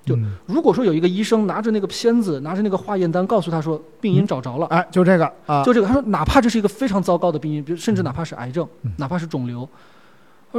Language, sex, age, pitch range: Chinese, male, 20-39, 145-200 Hz